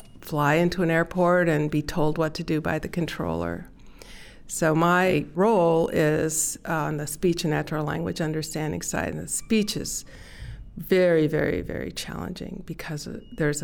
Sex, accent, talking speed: female, American, 155 wpm